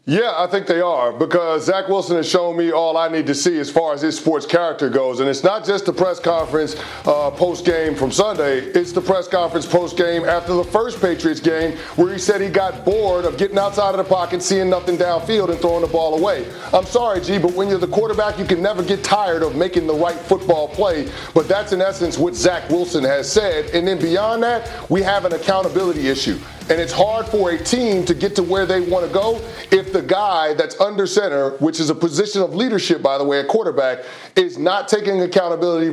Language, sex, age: English, male, 40-59